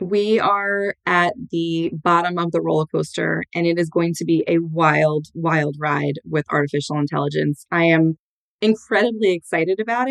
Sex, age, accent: female, 20-39, American